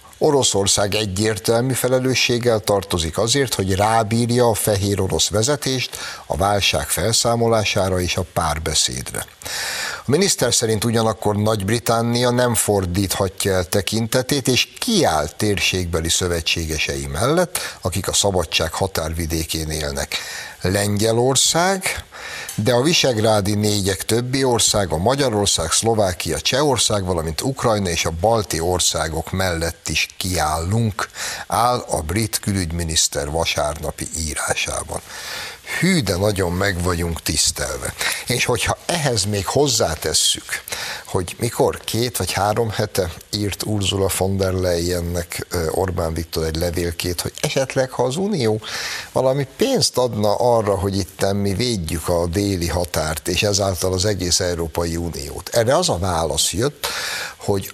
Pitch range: 85-115 Hz